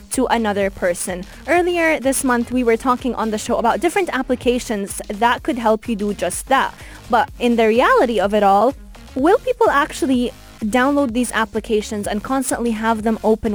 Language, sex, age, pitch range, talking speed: English, female, 20-39, 215-280 Hz, 175 wpm